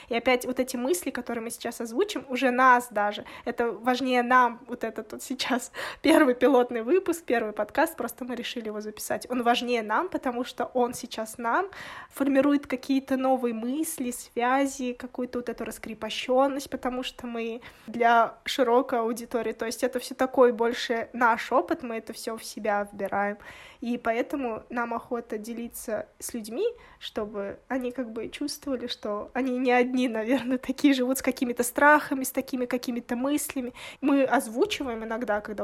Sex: female